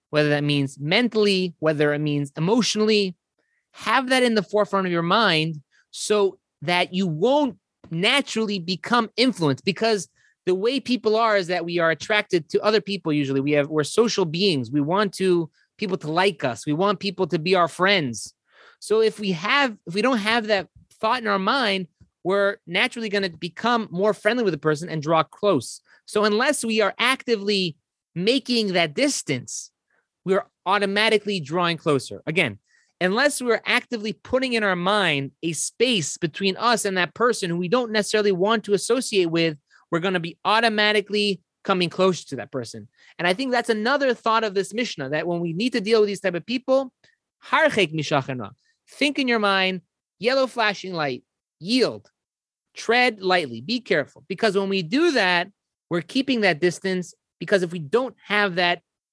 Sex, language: male, English